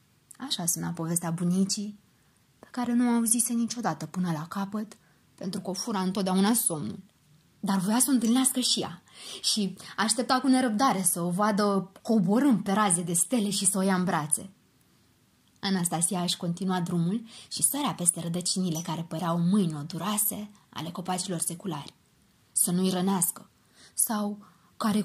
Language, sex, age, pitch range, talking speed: Romanian, female, 20-39, 180-225 Hz, 155 wpm